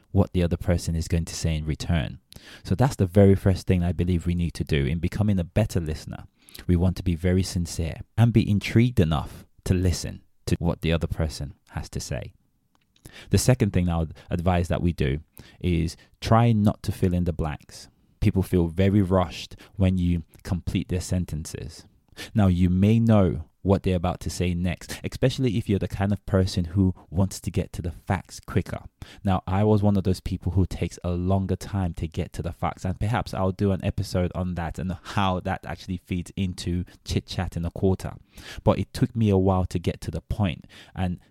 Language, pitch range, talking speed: English, 85-100 Hz, 210 wpm